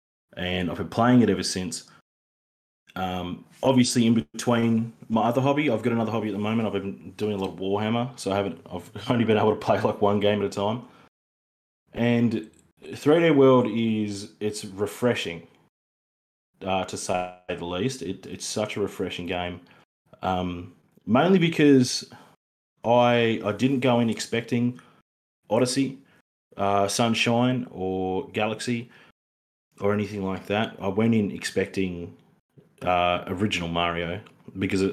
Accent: Australian